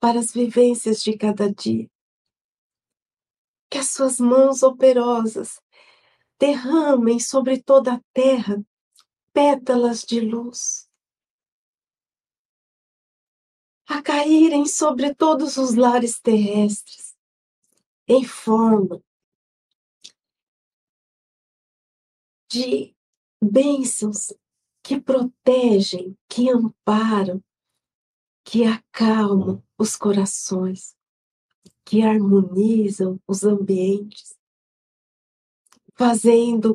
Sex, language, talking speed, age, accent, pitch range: female, Portuguese, 70 wpm, 50-69, Brazilian, 215-260 Hz